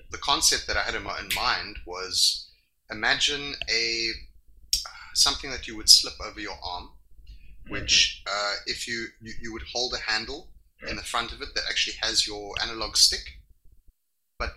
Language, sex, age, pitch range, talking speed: English, male, 30-49, 80-110 Hz, 165 wpm